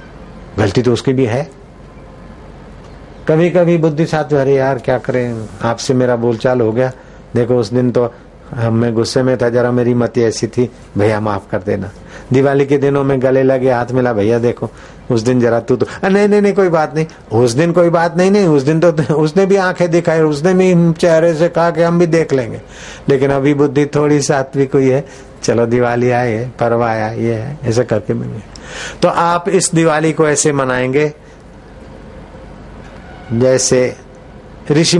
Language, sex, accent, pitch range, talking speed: Hindi, male, native, 115-155 Hz, 180 wpm